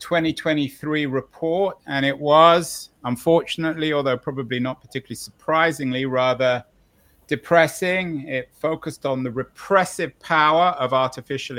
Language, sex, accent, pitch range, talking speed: English, male, British, 125-160 Hz, 110 wpm